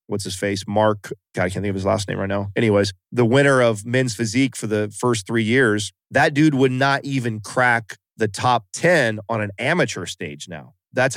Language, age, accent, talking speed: English, 30-49, American, 215 wpm